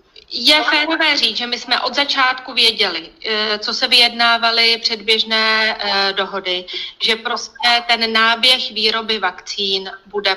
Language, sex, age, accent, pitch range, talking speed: Czech, female, 30-49, native, 200-235 Hz, 120 wpm